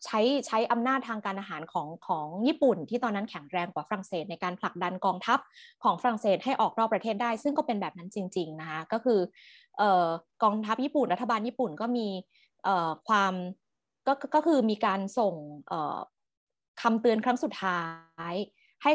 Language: Thai